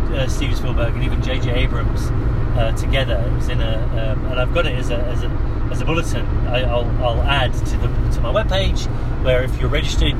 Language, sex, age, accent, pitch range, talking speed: English, male, 30-49, British, 110-125 Hz, 225 wpm